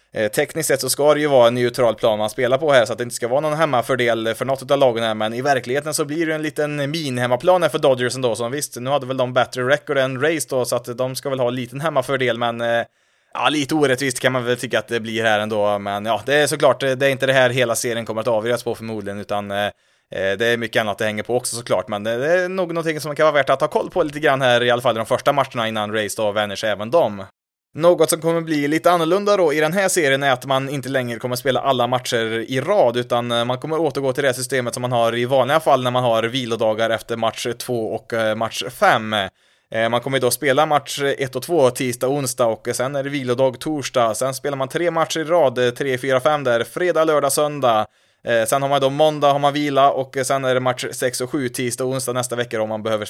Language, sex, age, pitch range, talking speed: Swedish, male, 20-39, 115-145 Hz, 260 wpm